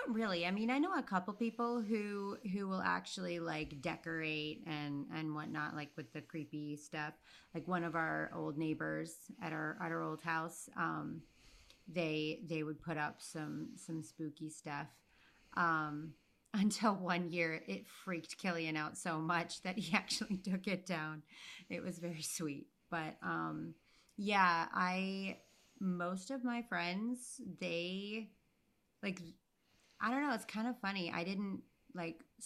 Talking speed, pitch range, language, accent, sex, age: 155 wpm, 160-200 Hz, English, American, female, 30-49